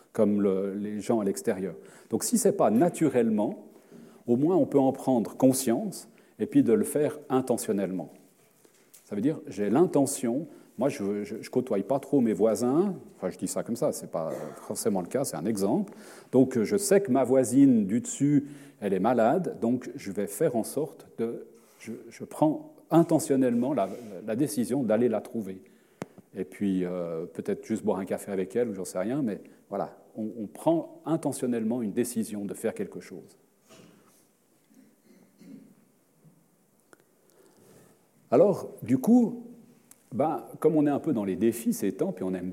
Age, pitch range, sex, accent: 40-59, 105-160 Hz, male, French